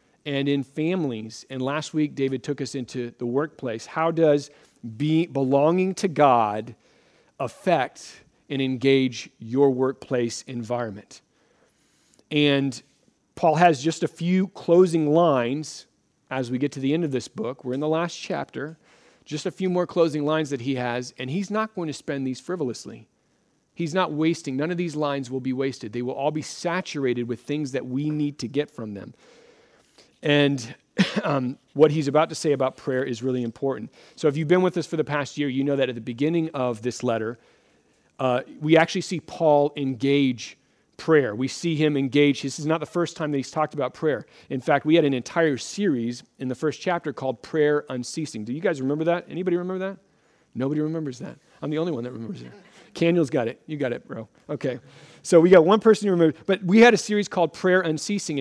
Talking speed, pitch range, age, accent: 200 wpm, 130-165 Hz, 40-59, American